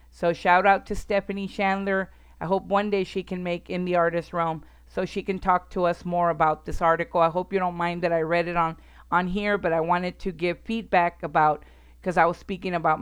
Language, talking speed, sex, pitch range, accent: English, 235 wpm, female, 160-190 Hz, American